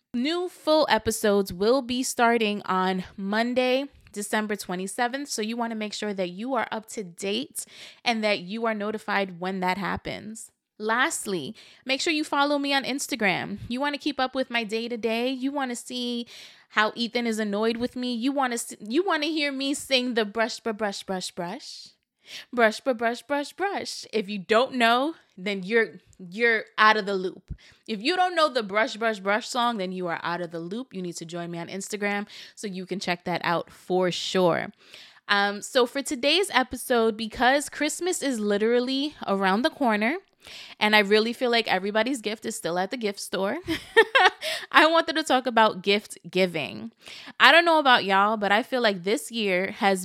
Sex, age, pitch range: female, 20-39, 200-260 Hz